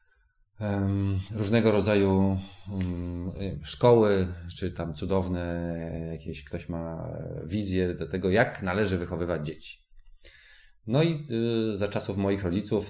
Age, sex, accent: 30-49, male, native